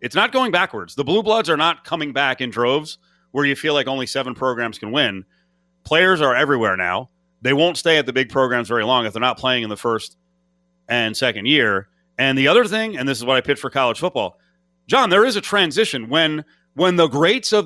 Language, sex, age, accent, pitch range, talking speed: English, male, 30-49, American, 120-175 Hz, 230 wpm